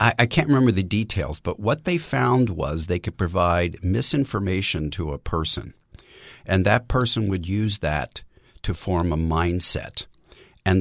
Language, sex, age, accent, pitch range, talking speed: English, male, 50-69, American, 80-105 Hz, 155 wpm